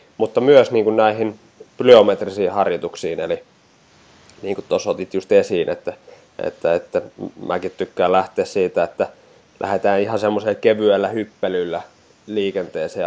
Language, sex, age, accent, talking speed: Finnish, male, 20-39, native, 125 wpm